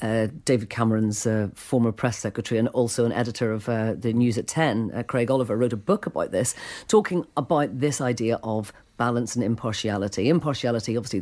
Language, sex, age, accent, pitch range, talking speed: English, female, 40-59, British, 110-130 Hz, 185 wpm